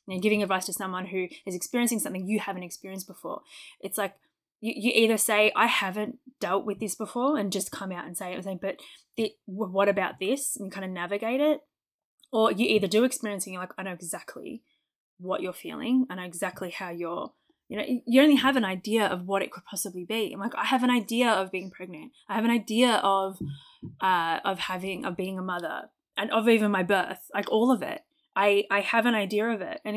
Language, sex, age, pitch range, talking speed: English, female, 20-39, 190-230 Hz, 230 wpm